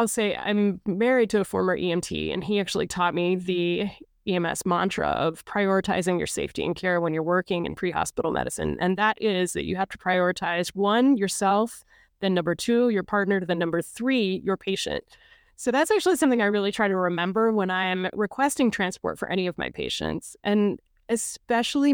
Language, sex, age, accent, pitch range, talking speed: English, female, 20-39, American, 180-215 Hz, 185 wpm